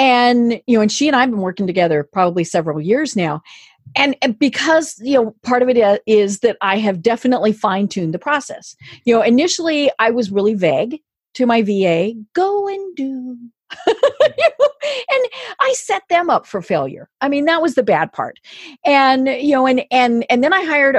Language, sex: English, female